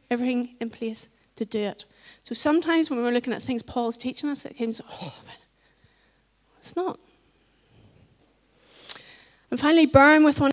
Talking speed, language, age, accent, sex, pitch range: 160 wpm, English, 30-49, British, female, 210-255 Hz